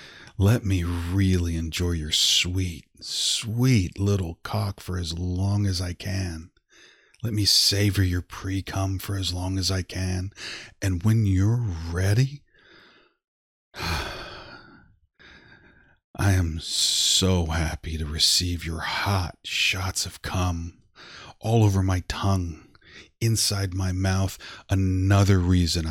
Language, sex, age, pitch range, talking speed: English, male, 40-59, 85-100 Hz, 115 wpm